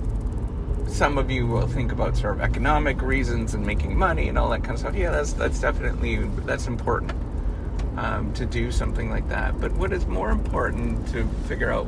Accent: American